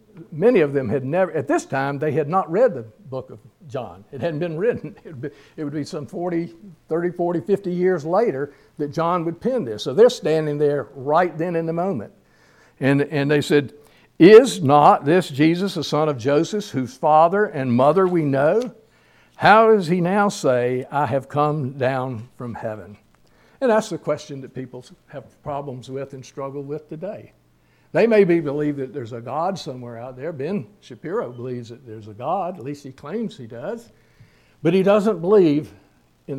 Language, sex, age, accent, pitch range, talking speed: English, male, 60-79, American, 125-165 Hz, 190 wpm